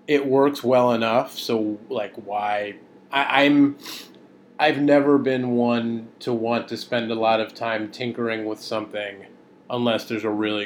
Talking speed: 150 wpm